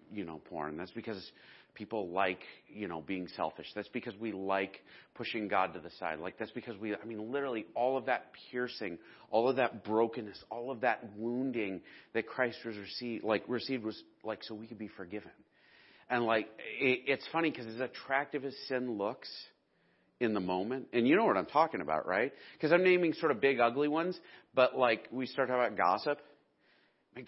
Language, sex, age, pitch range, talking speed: English, male, 40-59, 105-135 Hz, 195 wpm